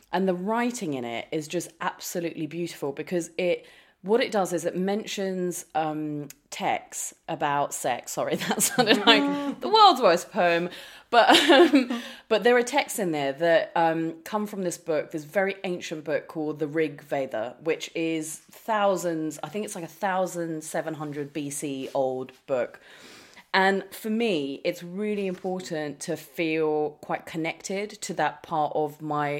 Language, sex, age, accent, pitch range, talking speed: English, female, 30-49, British, 155-200 Hz, 160 wpm